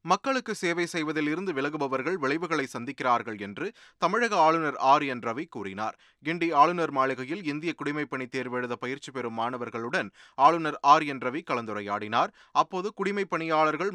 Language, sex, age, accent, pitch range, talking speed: Tamil, male, 30-49, native, 125-160 Hz, 130 wpm